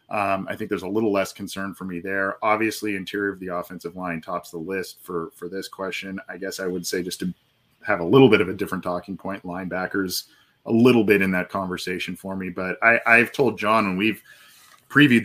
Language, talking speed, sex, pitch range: English, 225 wpm, male, 95-110 Hz